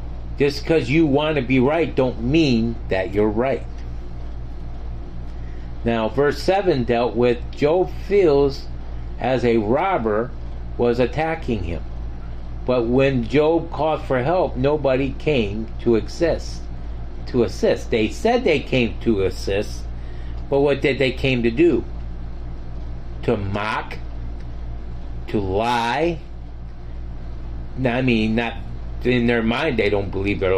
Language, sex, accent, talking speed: English, male, American, 125 wpm